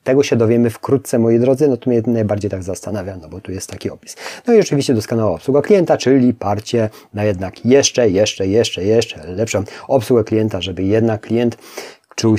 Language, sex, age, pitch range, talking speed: Polish, male, 30-49, 105-120 Hz, 190 wpm